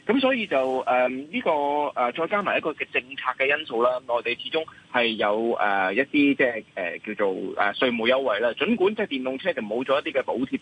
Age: 20-39